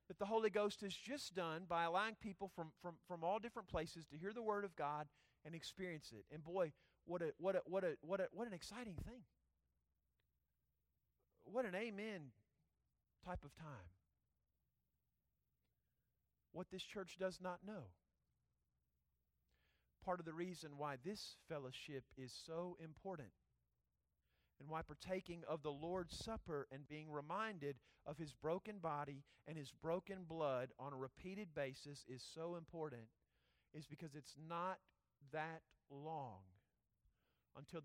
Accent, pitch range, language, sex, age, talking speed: American, 115-180 Hz, English, male, 40-59, 145 wpm